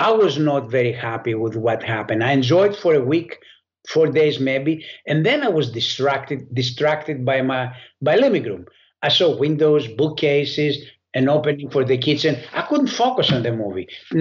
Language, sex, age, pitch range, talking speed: English, male, 60-79, 130-165 Hz, 175 wpm